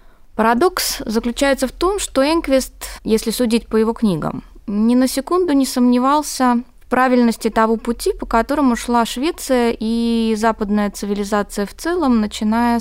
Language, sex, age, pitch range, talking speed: Russian, female, 20-39, 195-255 Hz, 140 wpm